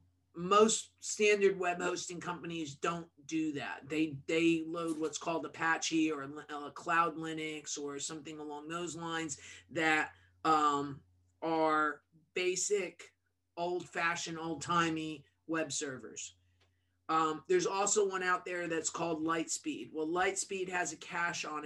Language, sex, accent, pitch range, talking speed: English, male, American, 150-185 Hz, 135 wpm